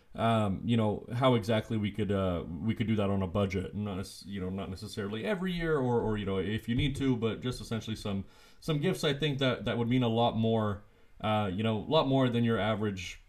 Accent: American